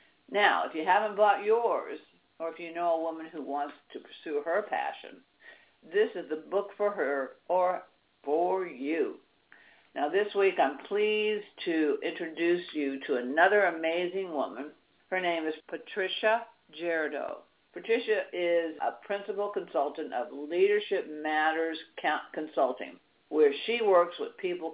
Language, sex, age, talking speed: English, female, 60-79, 140 wpm